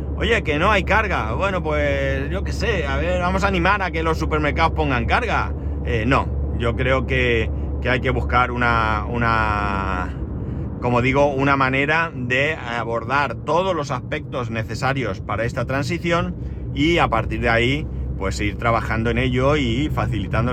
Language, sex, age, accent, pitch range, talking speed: Spanish, male, 30-49, Spanish, 110-135 Hz, 165 wpm